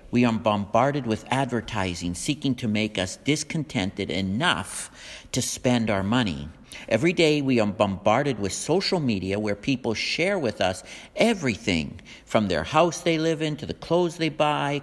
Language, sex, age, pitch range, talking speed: English, male, 60-79, 110-165 Hz, 160 wpm